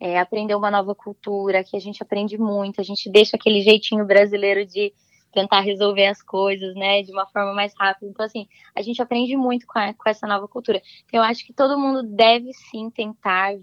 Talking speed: 200 wpm